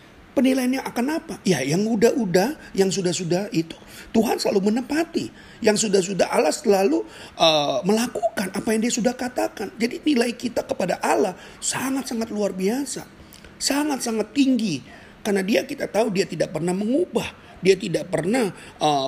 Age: 40-59